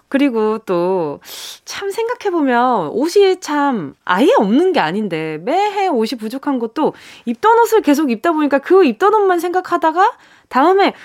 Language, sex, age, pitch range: Korean, female, 20-39, 210-320 Hz